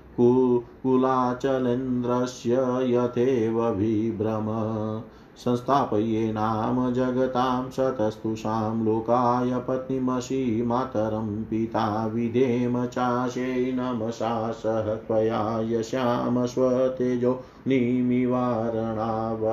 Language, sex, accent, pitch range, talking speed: Hindi, male, native, 110-125 Hz, 50 wpm